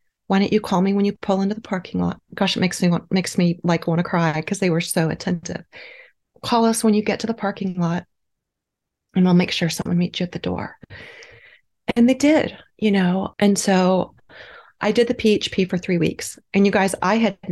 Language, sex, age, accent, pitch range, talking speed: English, female, 30-49, American, 175-205 Hz, 215 wpm